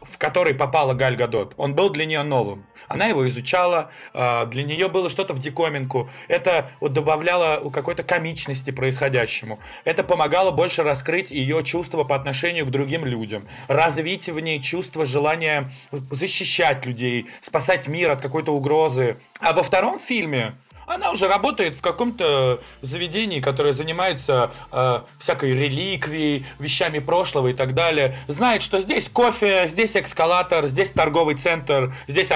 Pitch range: 140-195 Hz